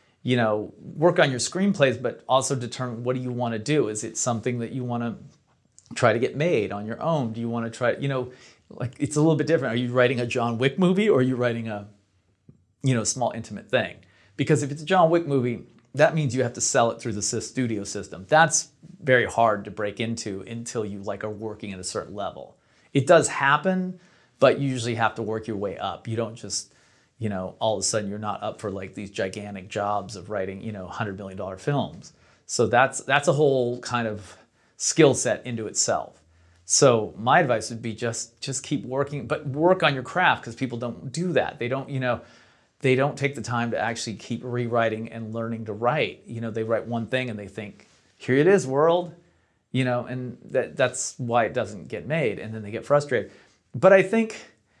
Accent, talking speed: American, 225 wpm